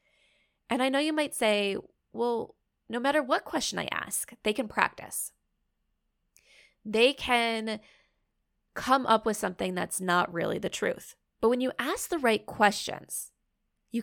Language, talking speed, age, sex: English, 150 wpm, 20-39, female